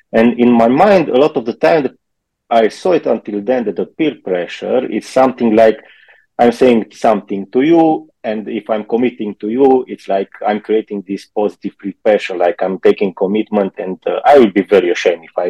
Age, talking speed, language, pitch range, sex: 30-49, 205 wpm, Romanian, 105-135 Hz, male